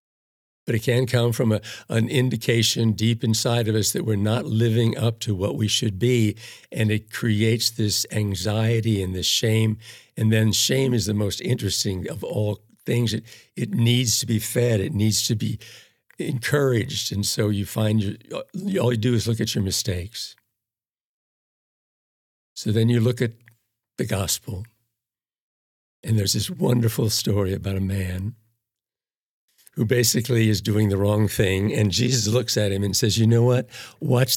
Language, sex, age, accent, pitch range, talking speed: English, male, 60-79, American, 105-115 Hz, 170 wpm